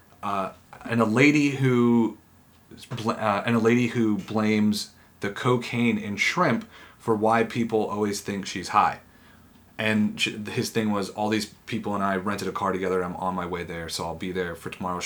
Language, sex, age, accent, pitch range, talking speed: English, male, 30-49, American, 95-115 Hz, 185 wpm